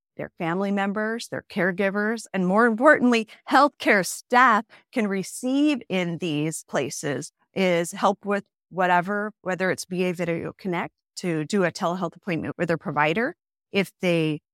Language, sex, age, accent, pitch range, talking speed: English, female, 40-59, American, 165-210 Hz, 140 wpm